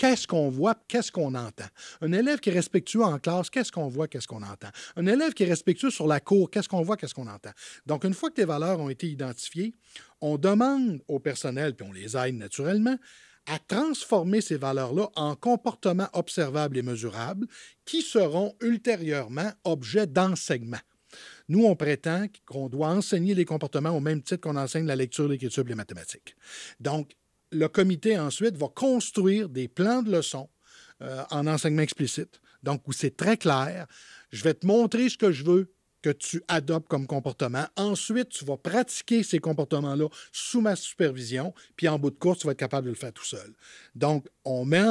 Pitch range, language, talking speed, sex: 140-200 Hz, French, 190 wpm, male